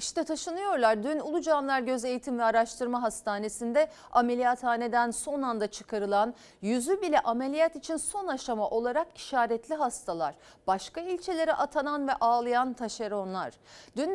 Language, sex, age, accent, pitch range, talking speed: Turkish, female, 40-59, native, 215-310 Hz, 125 wpm